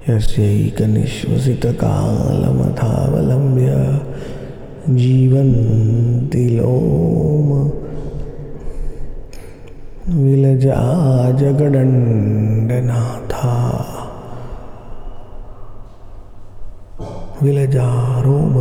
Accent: Indian